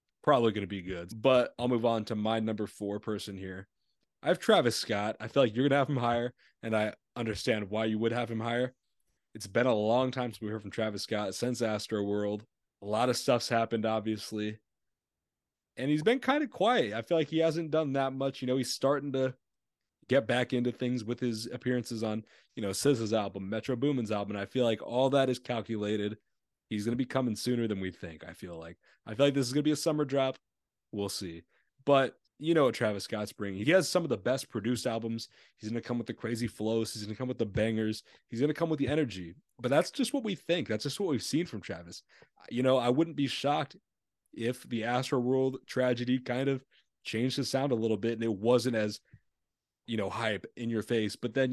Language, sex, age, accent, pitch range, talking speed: English, male, 30-49, American, 110-130 Hz, 235 wpm